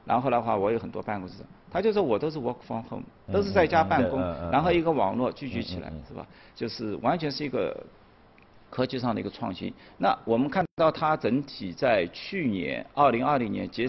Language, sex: Chinese, male